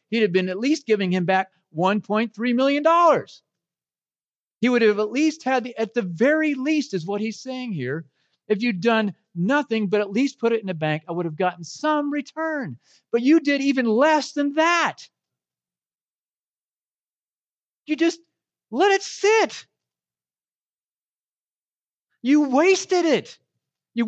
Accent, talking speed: American, 145 wpm